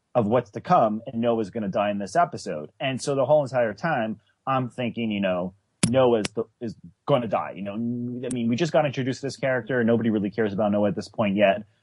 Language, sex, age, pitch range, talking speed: English, male, 30-49, 110-155 Hz, 245 wpm